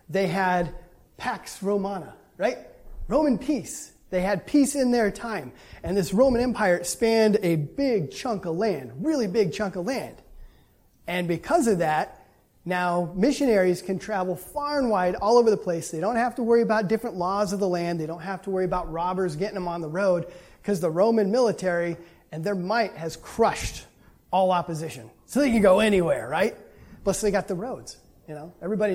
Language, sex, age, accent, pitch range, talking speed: English, male, 30-49, American, 180-225 Hz, 185 wpm